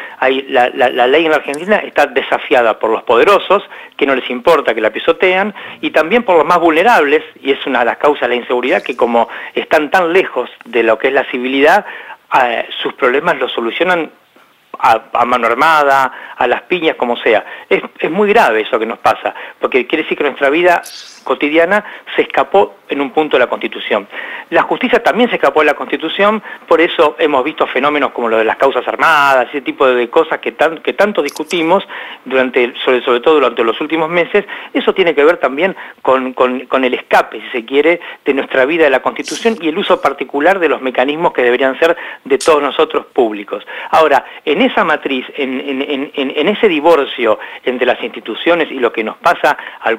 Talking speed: 205 wpm